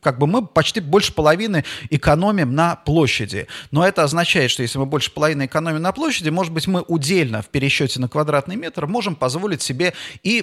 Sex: male